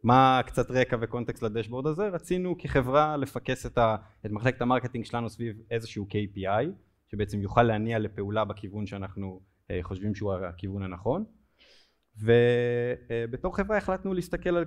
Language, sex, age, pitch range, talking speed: Hebrew, male, 20-39, 105-140 Hz, 125 wpm